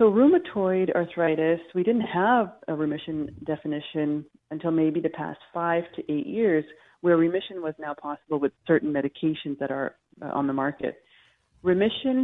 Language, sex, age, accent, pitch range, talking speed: English, female, 40-59, American, 145-180 Hz, 150 wpm